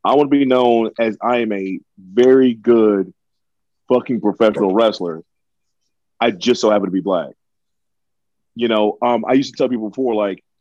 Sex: male